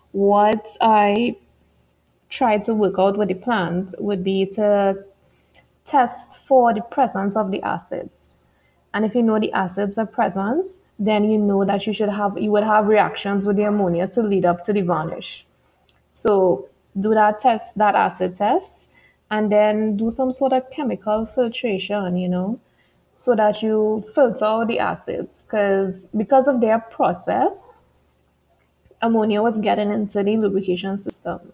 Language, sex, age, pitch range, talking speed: English, female, 20-39, 195-230 Hz, 160 wpm